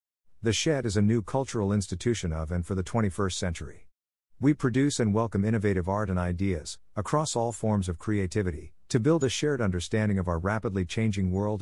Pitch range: 90-115 Hz